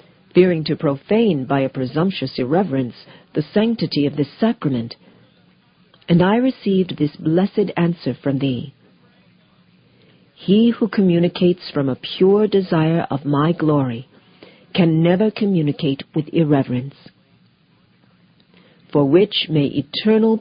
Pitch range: 150-205 Hz